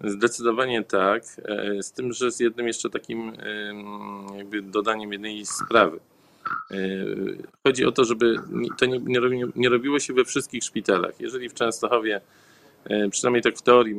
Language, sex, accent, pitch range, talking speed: Polish, male, native, 105-130 Hz, 135 wpm